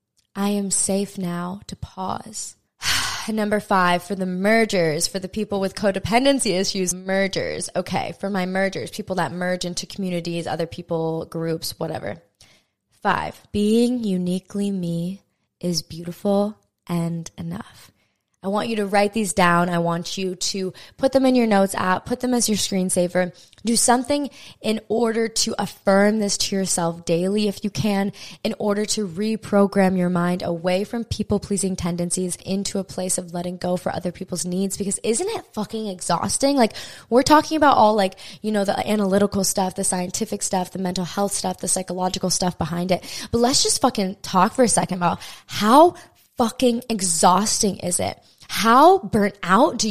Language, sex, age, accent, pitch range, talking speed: English, female, 20-39, American, 180-230 Hz, 170 wpm